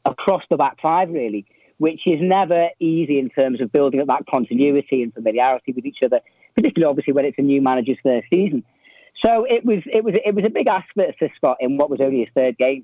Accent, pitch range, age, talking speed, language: British, 130-170 Hz, 40-59, 230 wpm, English